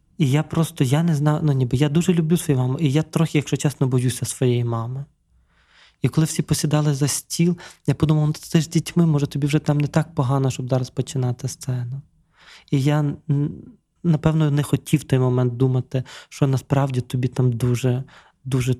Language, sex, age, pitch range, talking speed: Ukrainian, male, 20-39, 130-150 Hz, 190 wpm